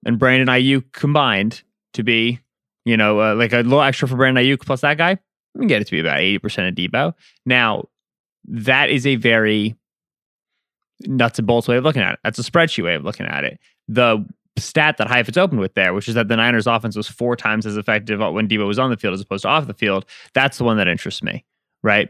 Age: 20-39